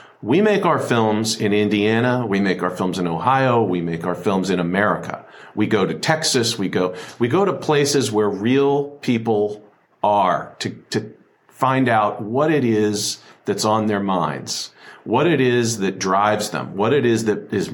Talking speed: 185 wpm